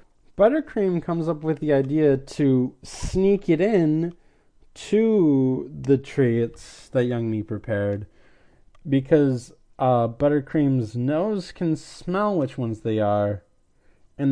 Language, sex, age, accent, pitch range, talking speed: English, male, 20-39, American, 125-180 Hz, 115 wpm